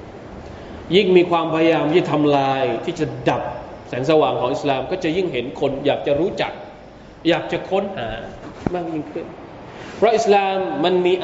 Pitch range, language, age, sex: 145-180 Hz, Thai, 20-39, male